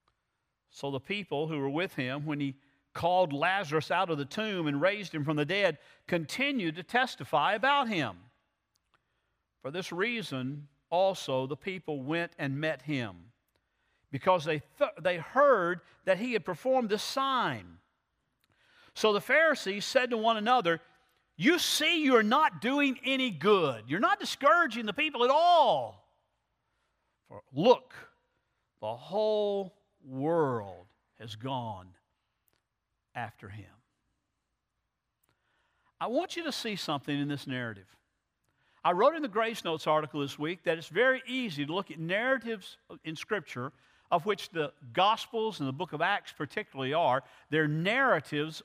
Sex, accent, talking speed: male, American, 145 wpm